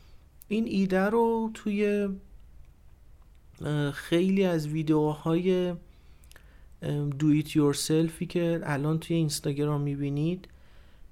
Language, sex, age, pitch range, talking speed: Persian, male, 40-59, 145-170 Hz, 75 wpm